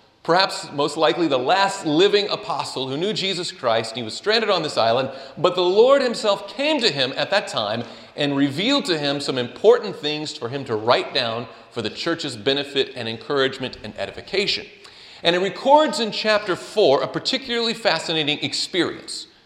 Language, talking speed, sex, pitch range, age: English, 180 wpm, male, 155-230 Hz, 40-59